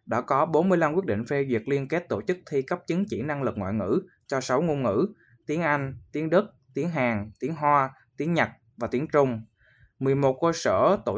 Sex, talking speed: male, 215 wpm